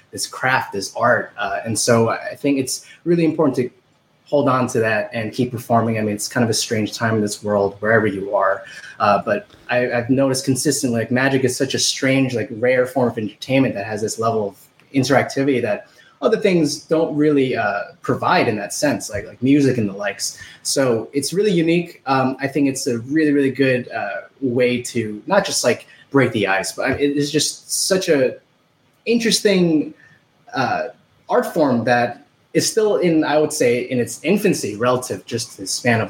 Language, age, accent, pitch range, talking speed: English, 20-39, American, 115-140 Hz, 200 wpm